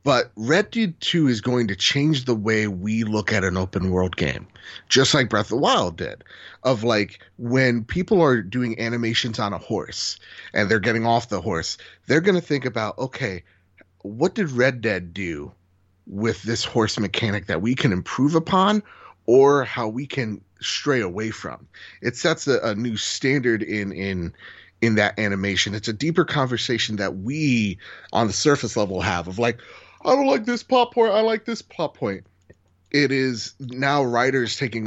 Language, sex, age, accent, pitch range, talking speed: English, male, 30-49, American, 100-135 Hz, 180 wpm